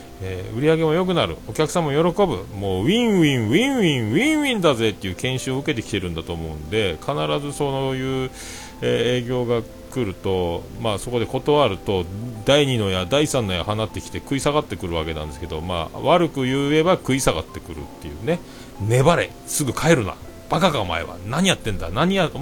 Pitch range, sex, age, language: 90-150 Hz, male, 40-59, Japanese